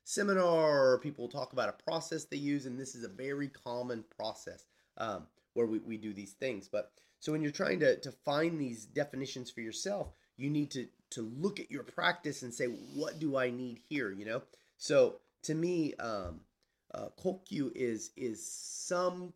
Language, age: English, 30-49